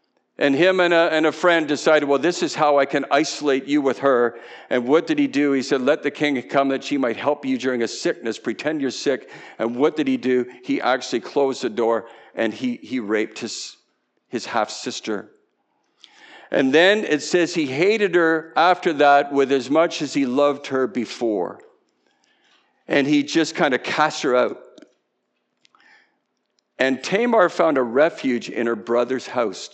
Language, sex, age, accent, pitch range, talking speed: English, male, 50-69, American, 135-170 Hz, 180 wpm